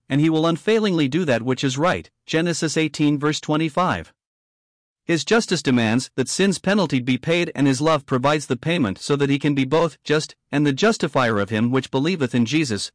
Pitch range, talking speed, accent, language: 135-170 Hz, 200 wpm, American, English